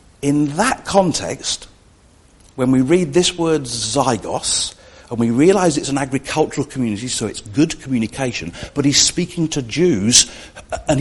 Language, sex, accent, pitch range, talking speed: English, male, British, 100-150 Hz, 140 wpm